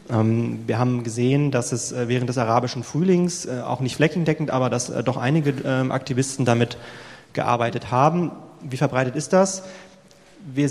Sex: male